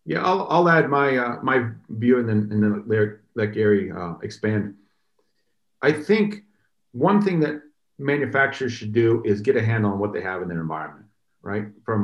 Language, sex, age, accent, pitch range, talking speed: English, male, 40-59, American, 105-125 Hz, 195 wpm